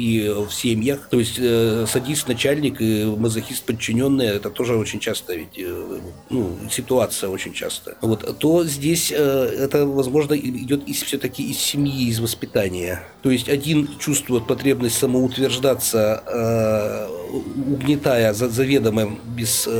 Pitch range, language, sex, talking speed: 115-140 Hz, Russian, male, 135 wpm